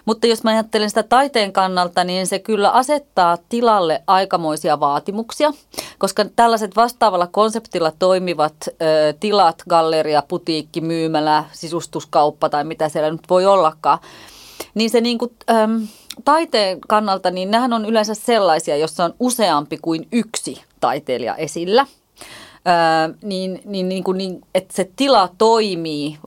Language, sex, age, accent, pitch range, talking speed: Finnish, female, 30-49, native, 165-225 Hz, 130 wpm